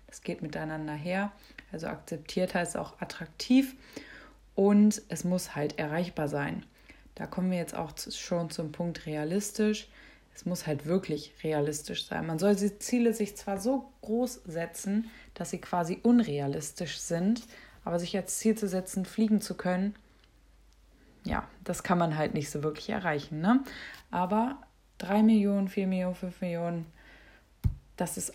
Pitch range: 170-215 Hz